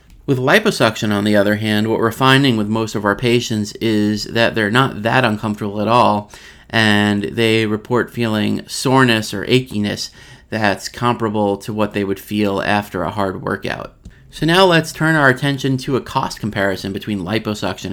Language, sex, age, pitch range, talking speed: English, male, 30-49, 105-125 Hz, 175 wpm